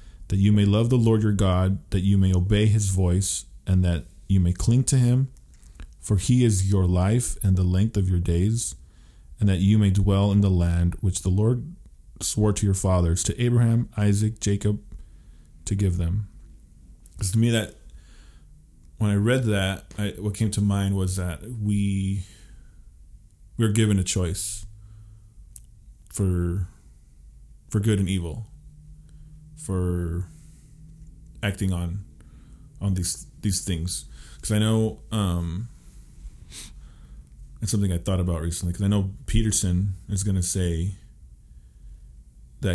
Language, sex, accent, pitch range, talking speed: English, male, American, 85-105 Hz, 150 wpm